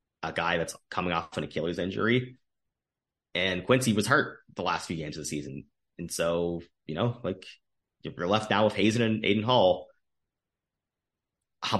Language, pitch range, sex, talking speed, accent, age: English, 85-115 Hz, male, 175 wpm, American, 30-49